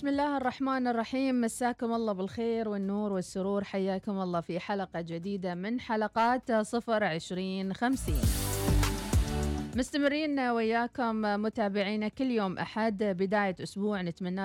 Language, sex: Arabic, female